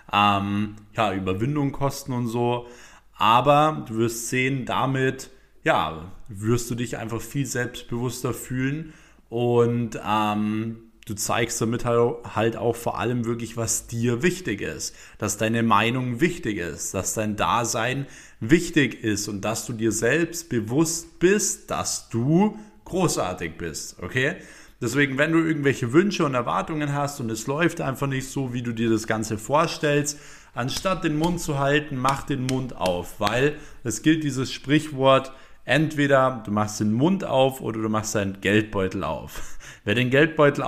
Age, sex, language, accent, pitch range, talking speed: 20-39, male, German, German, 110-140 Hz, 155 wpm